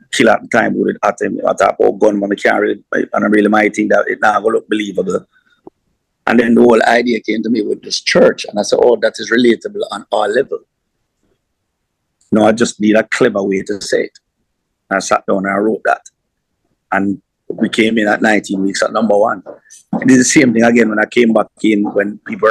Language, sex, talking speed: English, male, 230 wpm